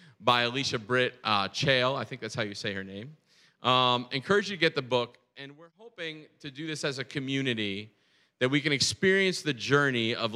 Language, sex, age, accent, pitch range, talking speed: English, male, 40-59, American, 120-155 Hz, 210 wpm